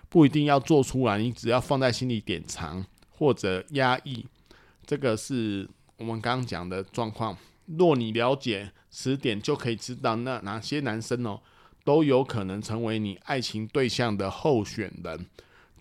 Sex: male